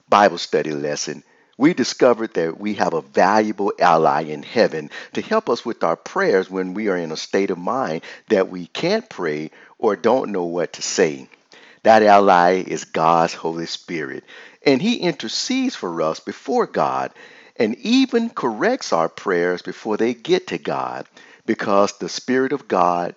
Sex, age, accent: male, 50-69, American